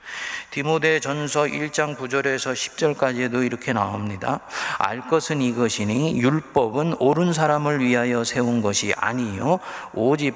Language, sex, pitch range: Korean, male, 105-145 Hz